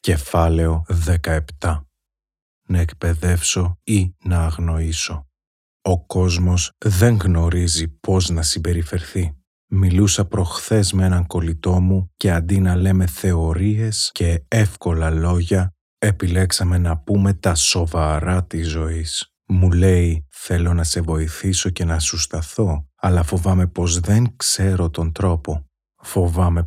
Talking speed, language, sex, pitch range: 120 wpm, Greek, male, 80-95 Hz